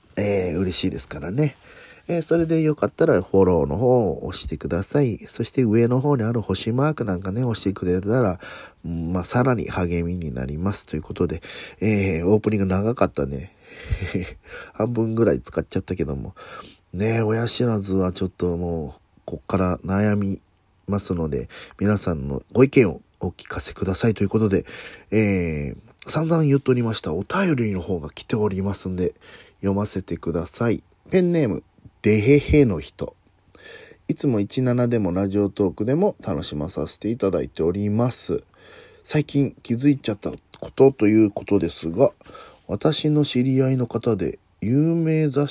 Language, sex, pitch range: Japanese, male, 90-125 Hz